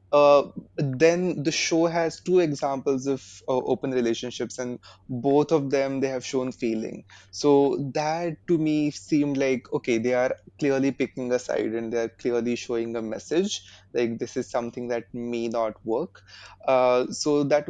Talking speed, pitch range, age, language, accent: 165 wpm, 125-145 Hz, 20-39, English, Indian